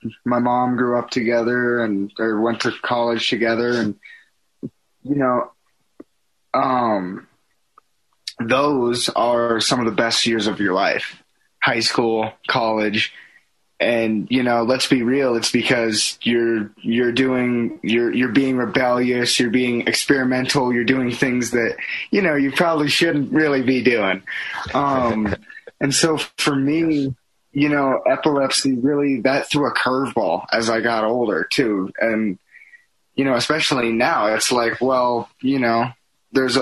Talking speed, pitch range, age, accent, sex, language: 140 wpm, 115-135 Hz, 20-39, American, male, English